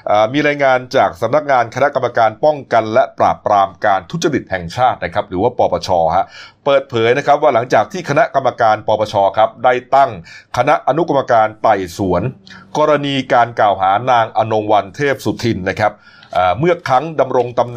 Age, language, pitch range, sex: 30-49, Thai, 110-150 Hz, male